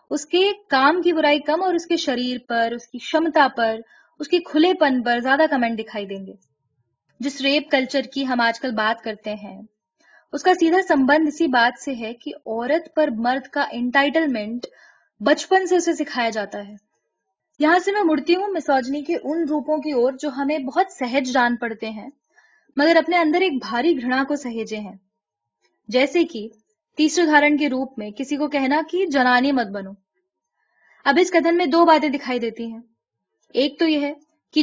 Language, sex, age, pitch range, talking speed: Urdu, female, 20-39, 230-320 Hz, 180 wpm